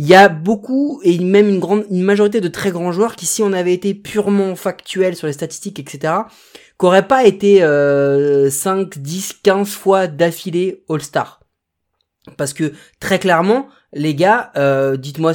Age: 30-49